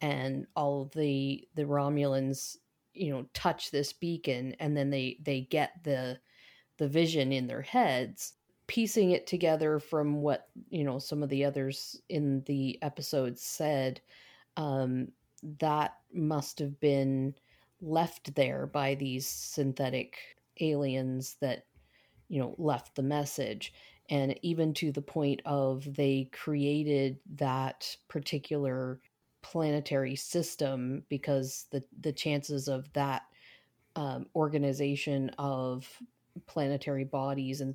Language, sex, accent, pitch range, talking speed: English, female, American, 135-150 Hz, 125 wpm